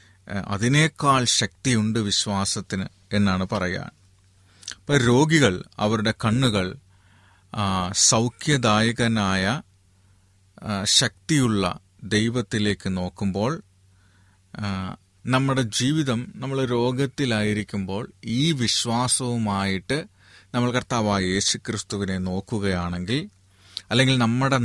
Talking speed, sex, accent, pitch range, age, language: 60 wpm, male, native, 95-115 Hz, 30-49, Malayalam